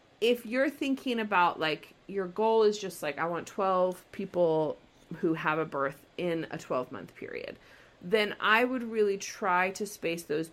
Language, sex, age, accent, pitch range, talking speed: English, female, 30-49, American, 165-225 Hz, 175 wpm